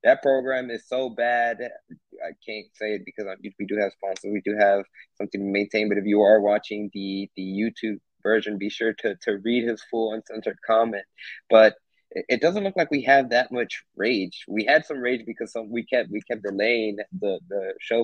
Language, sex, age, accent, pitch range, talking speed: English, male, 20-39, American, 100-120 Hz, 210 wpm